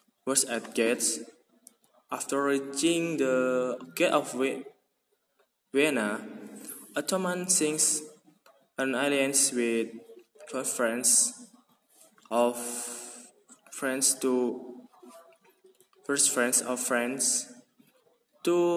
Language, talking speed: English, 75 wpm